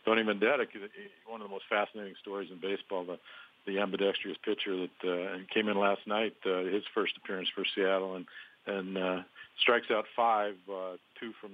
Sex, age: male, 50-69